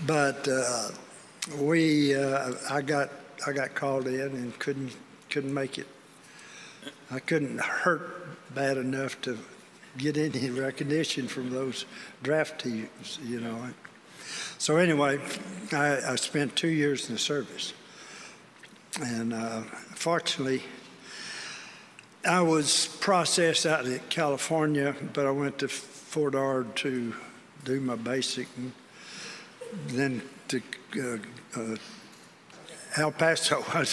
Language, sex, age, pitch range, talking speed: English, male, 60-79, 130-160 Hz, 120 wpm